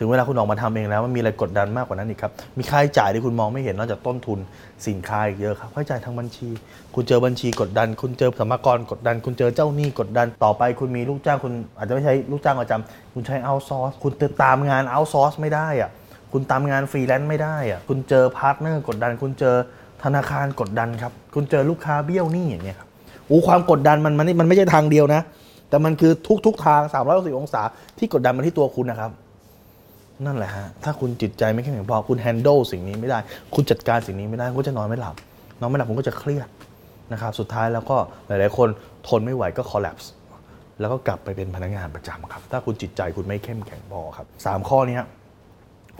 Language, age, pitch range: Thai, 20-39, 105-135 Hz